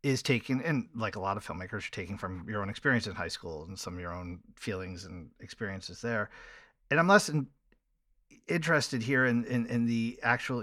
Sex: male